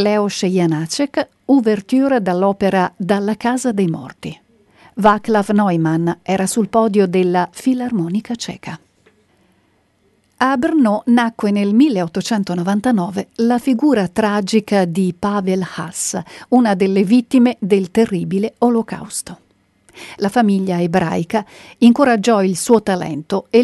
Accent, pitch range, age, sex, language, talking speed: native, 185-235 Hz, 50-69, female, Italian, 105 wpm